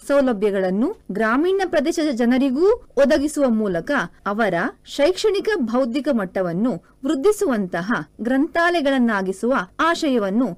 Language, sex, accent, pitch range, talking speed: Kannada, female, native, 225-325 Hz, 75 wpm